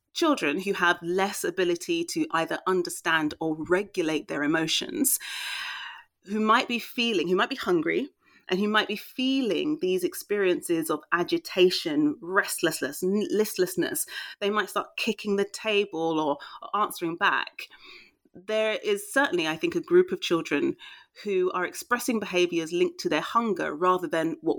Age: 30-49